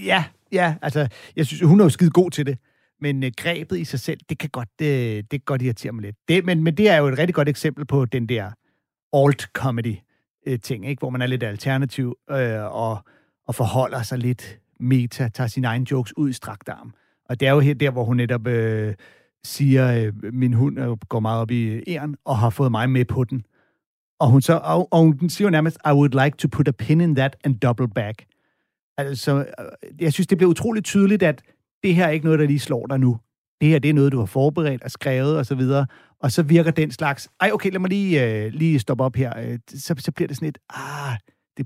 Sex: male